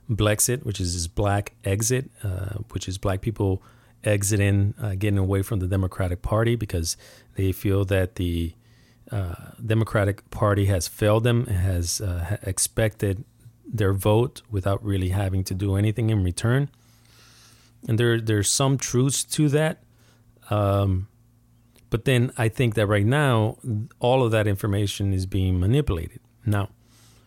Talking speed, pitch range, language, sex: 145 wpm, 100-120 Hz, English, male